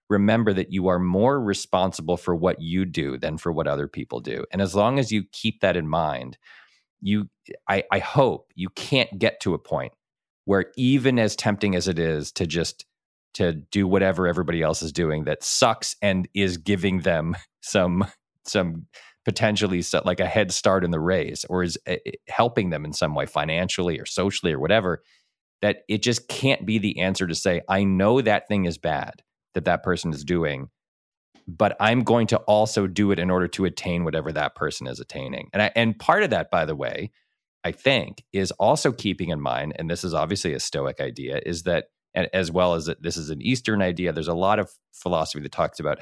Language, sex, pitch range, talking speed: English, male, 85-100 Hz, 205 wpm